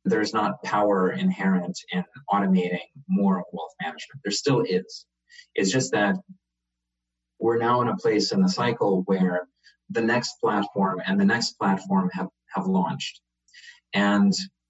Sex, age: male, 30-49